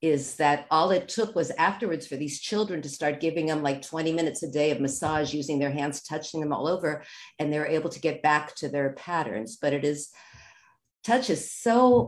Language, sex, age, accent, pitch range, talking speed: Hebrew, female, 50-69, American, 145-185 Hz, 220 wpm